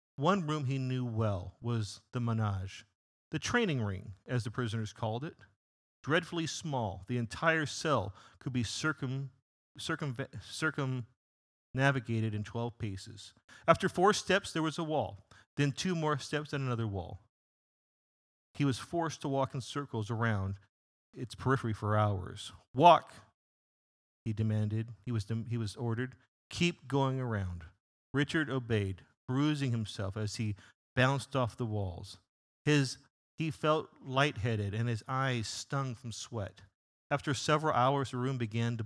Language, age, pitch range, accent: English, 40-59, 105-135 Hz, American